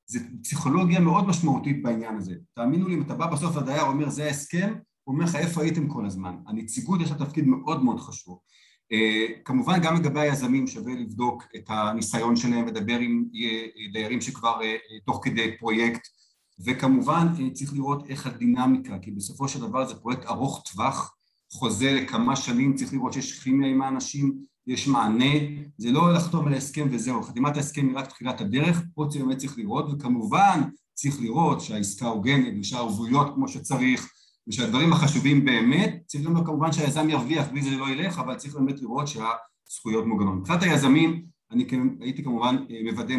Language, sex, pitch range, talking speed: Hebrew, male, 120-155 Hz, 165 wpm